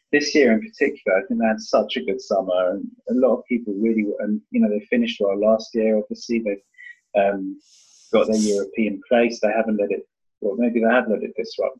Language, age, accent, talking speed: English, 30-49, British, 225 wpm